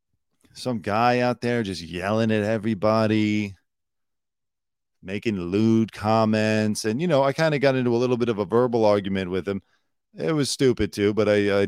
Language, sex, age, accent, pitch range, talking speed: English, male, 40-59, American, 100-130 Hz, 180 wpm